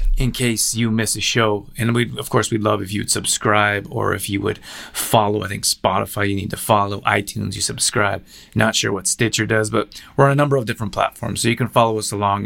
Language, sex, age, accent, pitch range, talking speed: English, male, 30-49, American, 105-115 Hz, 235 wpm